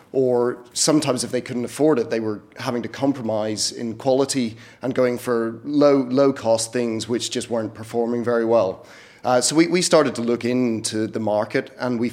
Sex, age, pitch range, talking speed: male, 30-49, 110-130 Hz, 190 wpm